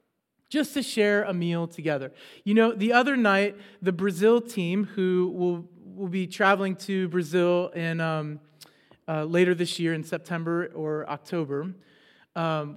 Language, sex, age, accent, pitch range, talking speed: English, male, 30-49, American, 170-210 Hz, 150 wpm